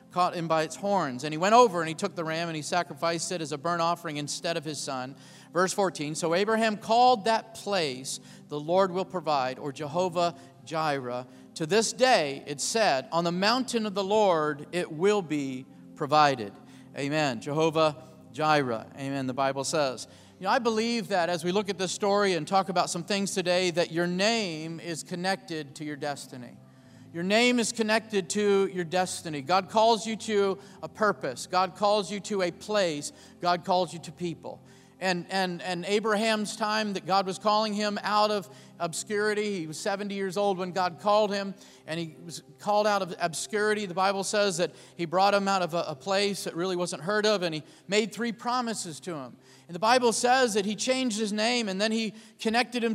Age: 40-59